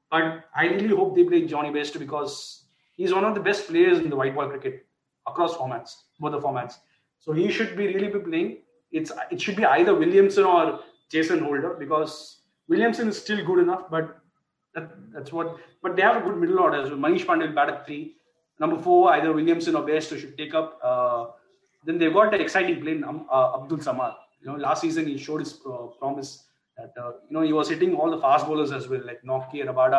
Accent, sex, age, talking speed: Indian, male, 30-49, 215 wpm